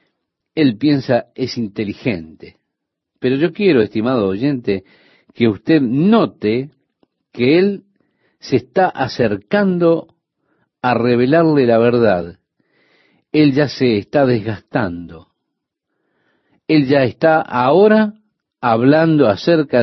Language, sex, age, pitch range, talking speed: Spanish, male, 50-69, 110-155 Hz, 95 wpm